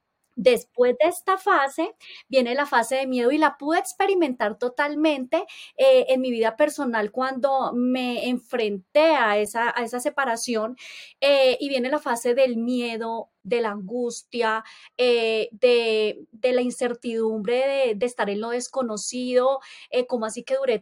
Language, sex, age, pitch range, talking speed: Spanish, female, 20-39, 230-285 Hz, 150 wpm